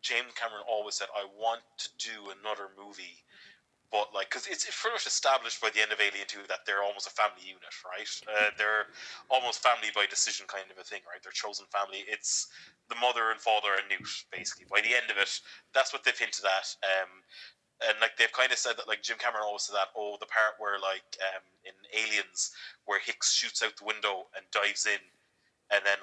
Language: English